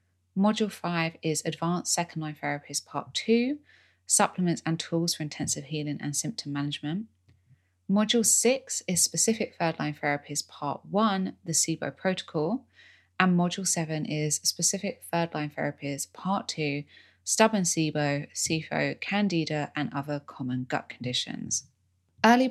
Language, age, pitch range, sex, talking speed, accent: English, 20-39, 140-175 Hz, female, 125 wpm, British